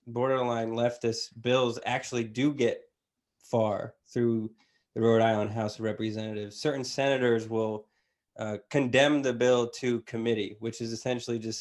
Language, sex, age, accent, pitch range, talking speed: English, male, 20-39, American, 110-135 Hz, 140 wpm